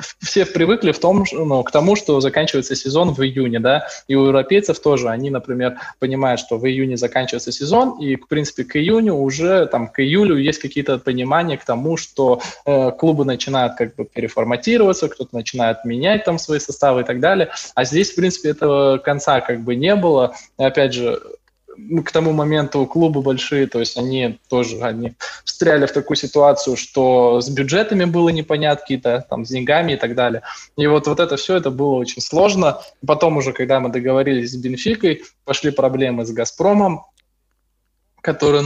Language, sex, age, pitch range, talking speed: Russian, male, 20-39, 125-160 Hz, 180 wpm